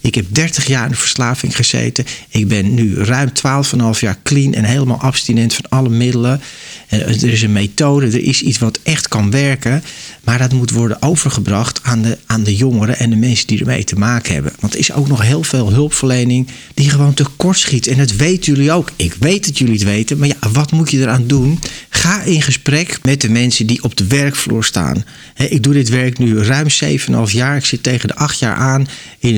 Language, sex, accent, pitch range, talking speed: Dutch, male, Dutch, 110-140 Hz, 220 wpm